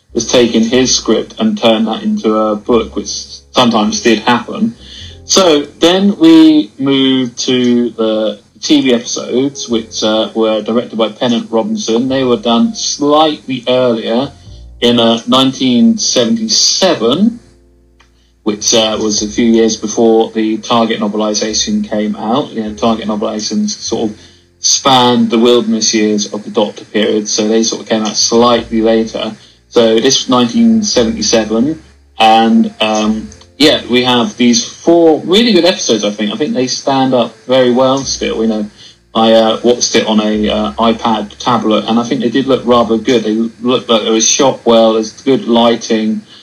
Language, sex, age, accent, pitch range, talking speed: English, male, 30-49, British, 110-125 Hz, 160 wpm